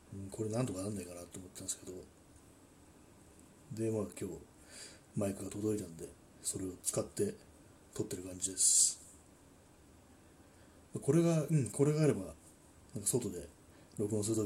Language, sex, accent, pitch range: Japanese, male, native, 90-110 Hz